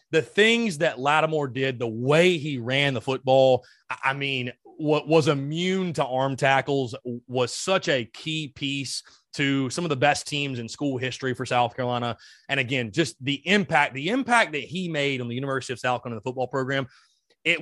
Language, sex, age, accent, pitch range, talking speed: English, male, 30-49, American, 125-170 Hz, 185 wpm